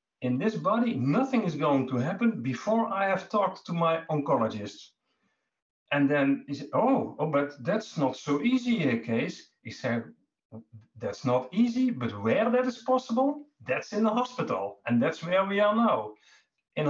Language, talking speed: English, 175 wpm